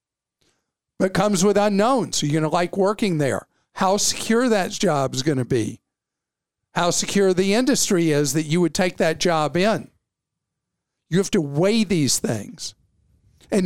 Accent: American